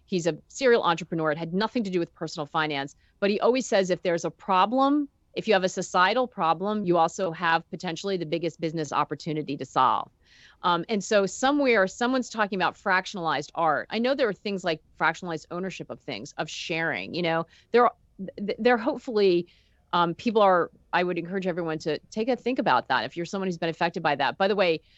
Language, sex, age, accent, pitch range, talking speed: English, female, 40-59, American, 160-200 Hz, 205 wpm